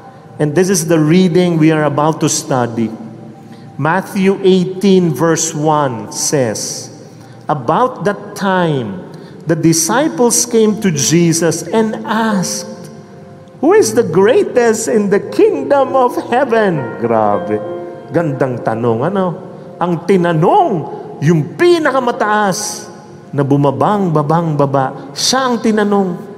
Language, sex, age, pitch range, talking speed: English, male, 40-59, 150-220 Hz, 105 wpm